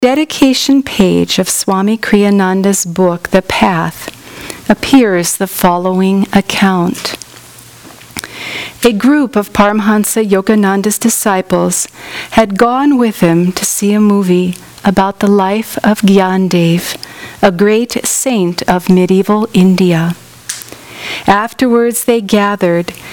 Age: 50-69